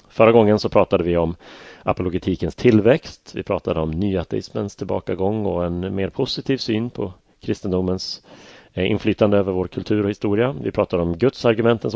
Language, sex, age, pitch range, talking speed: Swedish, male, 30-49, 90-115 Hz, 160 wpm